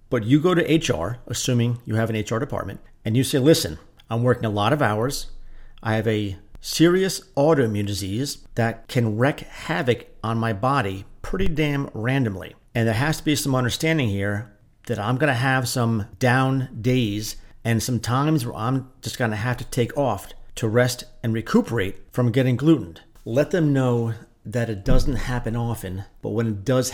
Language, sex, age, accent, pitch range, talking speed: English, male, 50-69, American, 110-135 Hz, 185 wpm